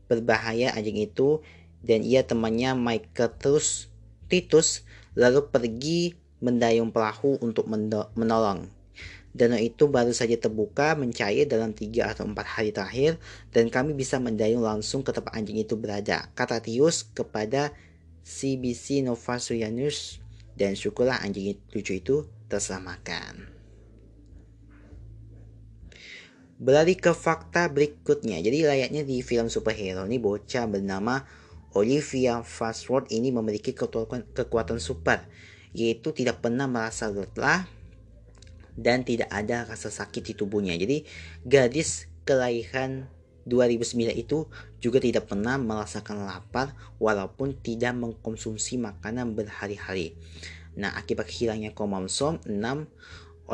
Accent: native